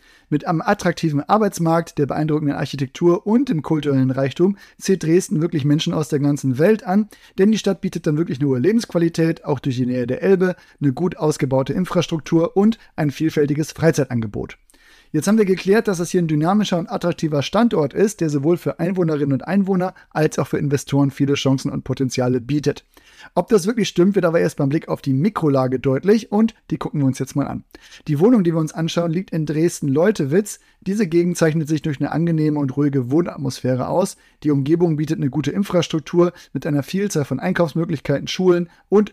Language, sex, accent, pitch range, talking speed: German, male, German, 140-180 Hz, 190 wpm